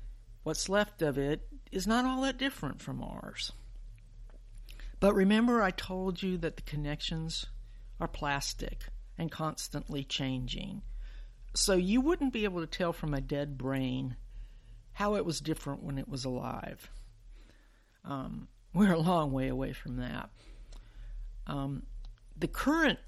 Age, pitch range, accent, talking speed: 60-79, 120-175 Hz, American, 140 wpm